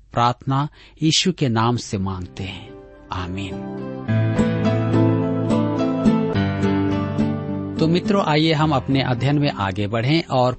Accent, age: native, 50-69